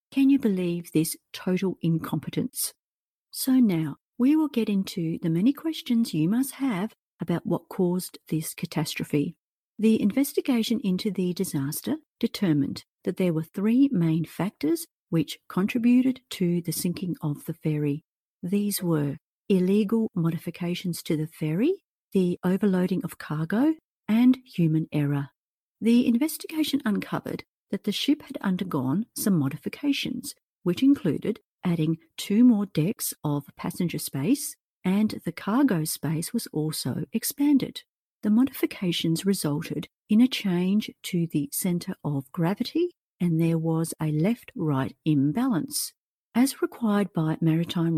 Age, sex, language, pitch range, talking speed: 50-69, female, English, 160-245 Hz, 130 wpm